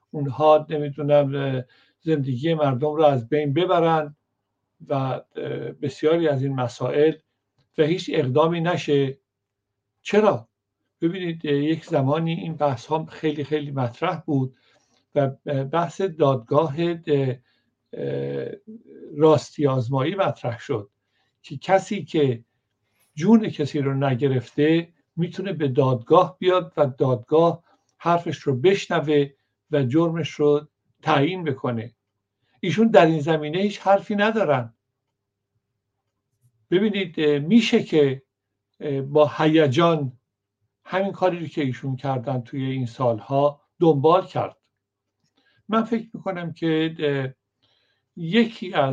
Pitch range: 125-160 Hz